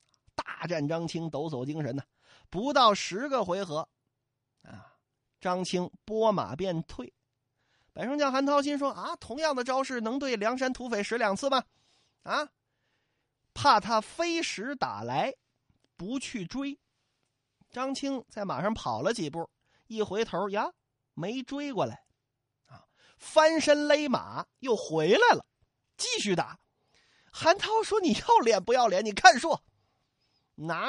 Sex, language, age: male, Chinese, 30-49